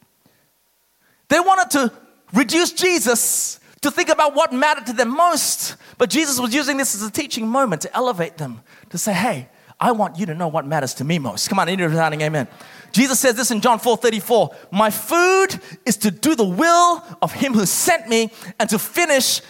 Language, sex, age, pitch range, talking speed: English, male, 20-39, 225-315 Hz, 200 wpm